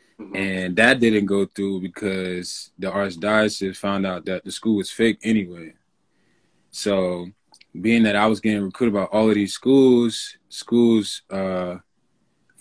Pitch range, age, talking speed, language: 95-110 Hz, 20-39, 145 wpm, English